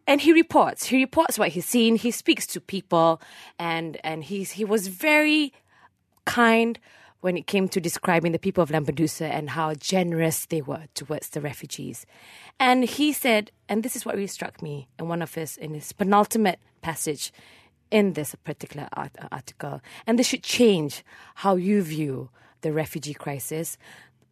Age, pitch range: 20-39, 155-225 Hz